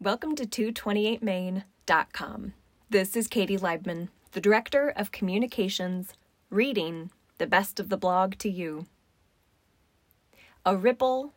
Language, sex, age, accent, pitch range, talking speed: English, female, 20-39, American, 180-220 Hz, 115 wpm